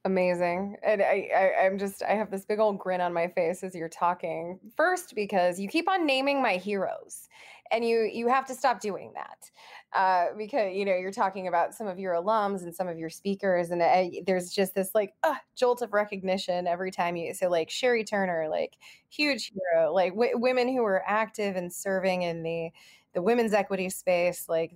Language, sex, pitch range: English, female, 185-245 Hz